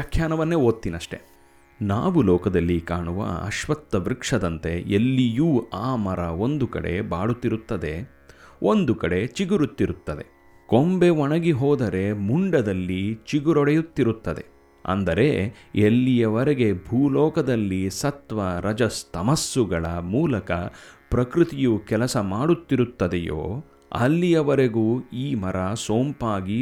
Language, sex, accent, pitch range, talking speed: Kannada, male, native, 95-140 Hz, 70 wpm